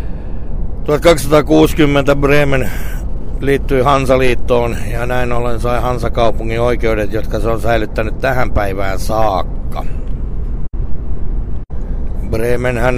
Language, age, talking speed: Finnish, 60-79, 85 wpm